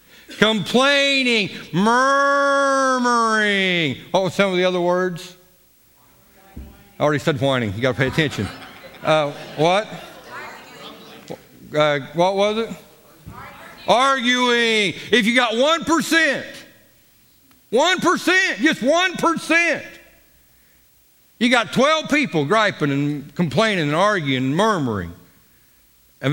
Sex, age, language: male, 60-79, English